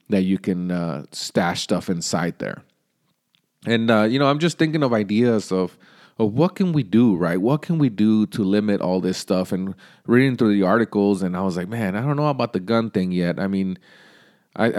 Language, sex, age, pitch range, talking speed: English, male, 30-49, 95-120 Hz, 220 wpm